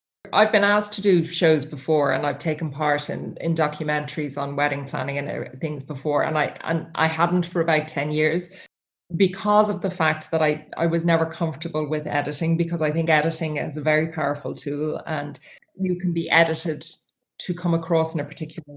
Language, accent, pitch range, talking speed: English, Irish, 155-175 Hz, 195 wpm